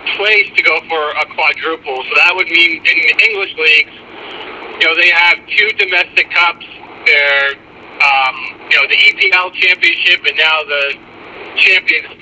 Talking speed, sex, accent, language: 155 wpm, male, American, English